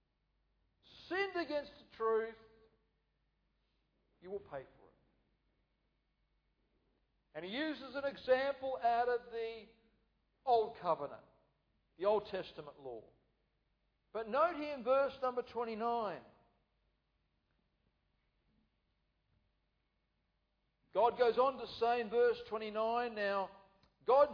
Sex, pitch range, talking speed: male, 200-260 Hz, 100 wpm